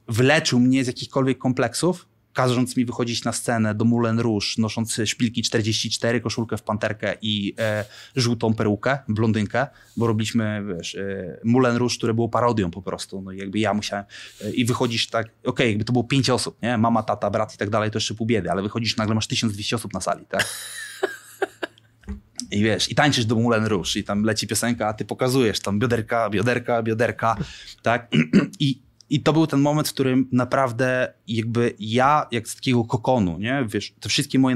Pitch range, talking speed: 110-125 Hz, 190 wpm